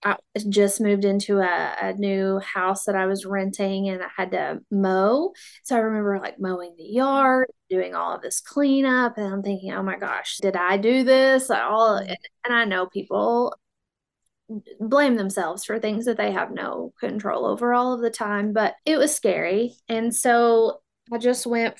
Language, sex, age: English, female, 20-39